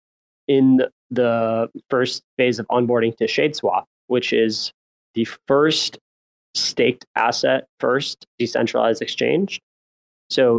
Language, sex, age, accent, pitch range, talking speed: English, male, 20-39, American, 110-125 Hz, 95 wpm